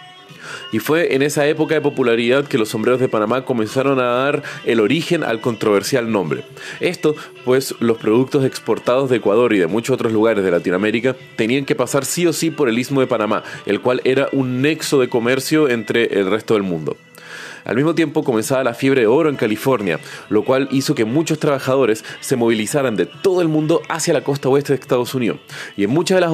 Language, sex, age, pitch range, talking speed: Spanish, male, 30-49, 110-145 Hz, 205 wpm